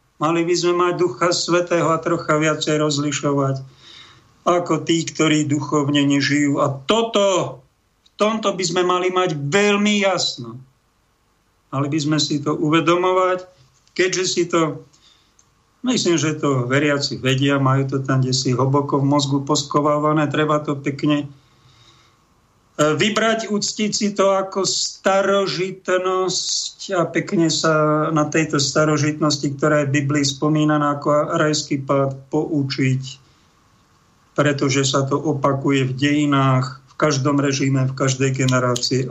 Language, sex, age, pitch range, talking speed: Slovak, male, 50-69, 135-170 Hz, 125 wpm